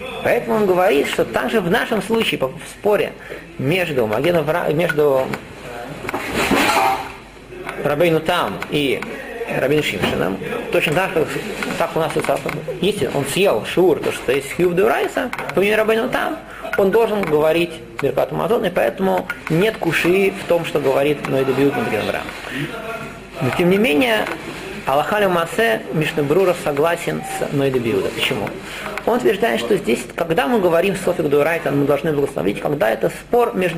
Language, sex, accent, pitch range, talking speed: Russian, male, native, 150-195 Hz, 135 wpm